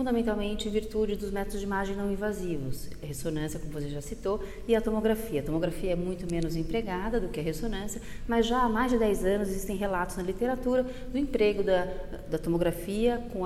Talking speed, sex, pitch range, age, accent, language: 200 wpm, female, 180-235 Hz, 30-49, Brazilian, Portuguese